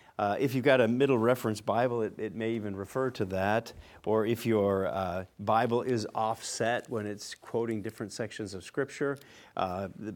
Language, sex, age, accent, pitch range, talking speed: English, male, 50-69, American, 105-140 Hz, 175 wpm